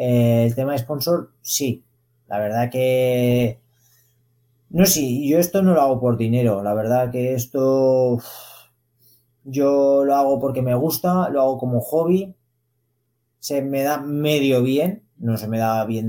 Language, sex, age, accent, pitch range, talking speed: Spanish, male, 20-39, Spanish, 120-135 Hz, 160 wpm